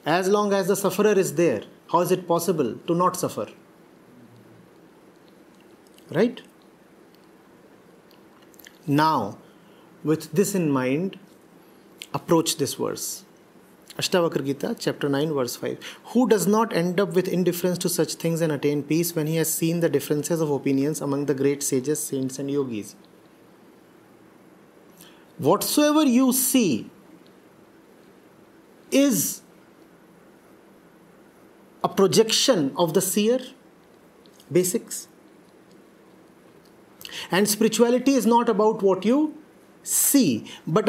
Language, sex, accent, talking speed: English, male, Indian, 110 wpm